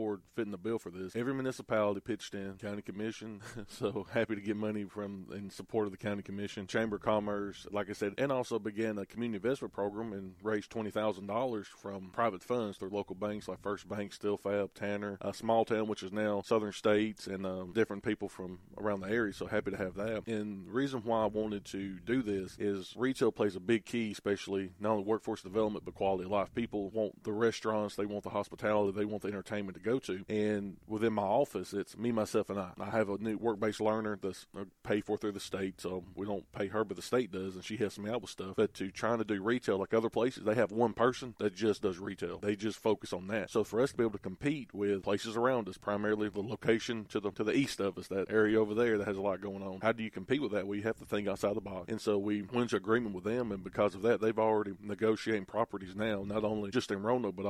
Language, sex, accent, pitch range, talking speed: English, male, American, 100-110 Hz, 250 wpm